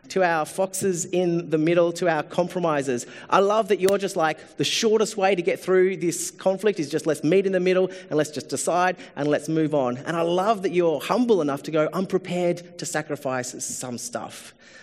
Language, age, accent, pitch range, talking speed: English, 30-49, Australian, 130-175 Hz, 210 wpm